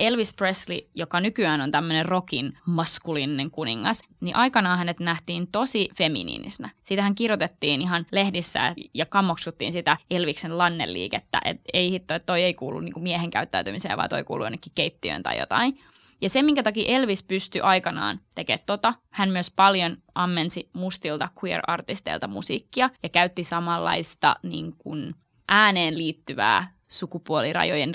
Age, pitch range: 20-39, 170-205 Hz